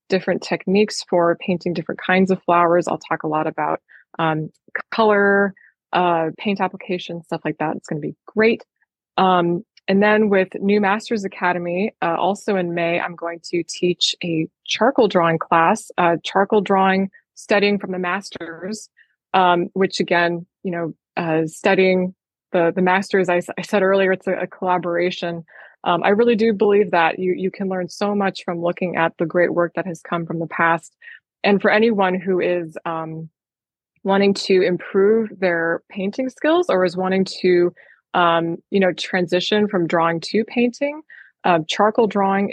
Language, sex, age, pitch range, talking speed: English, female, 20-39, 170-195 Hz, 170 wpm